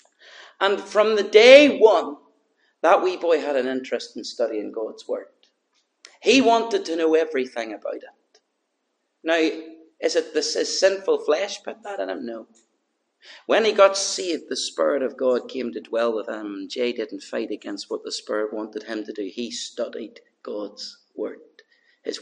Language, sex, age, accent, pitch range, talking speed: English, male, 40-59, British, 120-160 Hz, 165 wpm